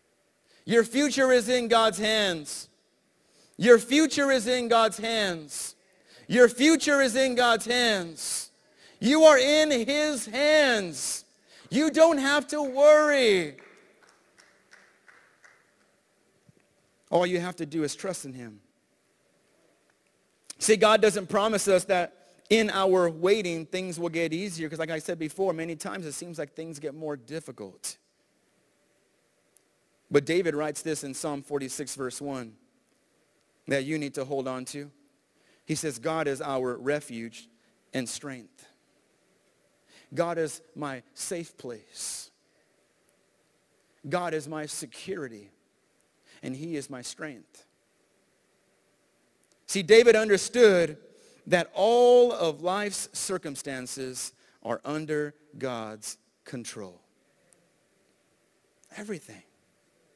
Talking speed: 115 wpm